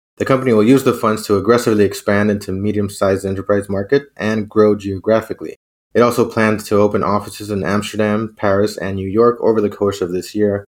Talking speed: 190 wpm